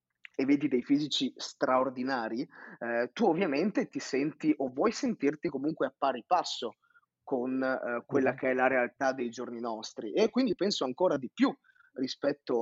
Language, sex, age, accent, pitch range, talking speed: Italian, male, 20-39, native, 125-155 Hz, 160 wpm